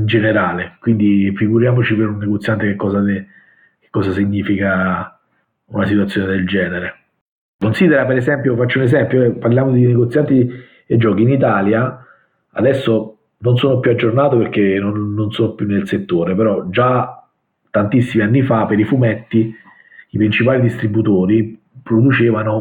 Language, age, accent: Italian, 40-59, native